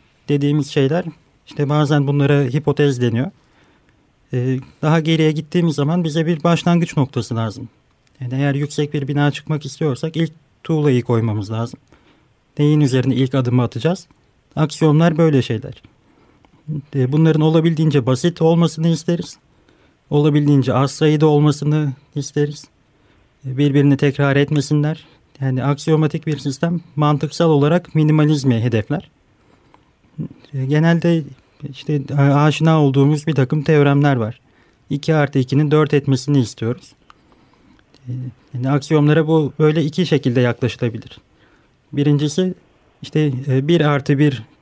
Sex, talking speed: male, 110 wpm